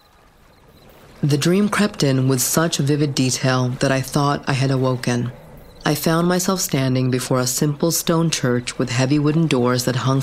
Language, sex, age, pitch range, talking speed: English, female, 40-59, 130-150 Hz, 170 wpm